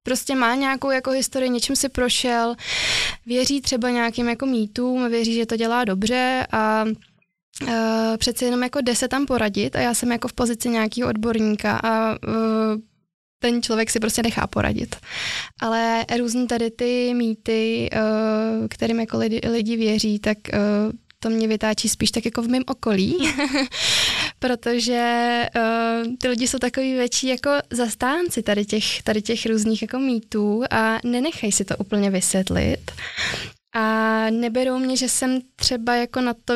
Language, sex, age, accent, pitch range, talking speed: Czech, female, 20-39, native, 225-255 Hz, 145 wpm